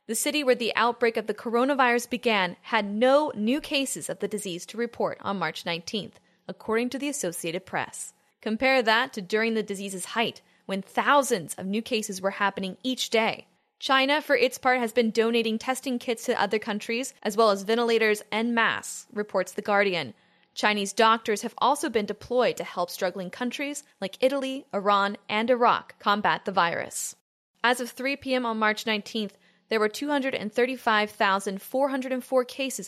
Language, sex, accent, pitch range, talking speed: English, female, American, 200-250 Hz, 170 wpm